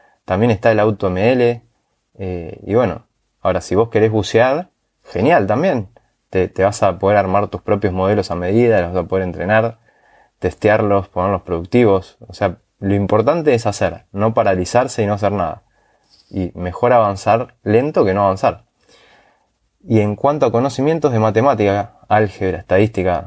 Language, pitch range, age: Spanish, 95-115 Hz, 20-39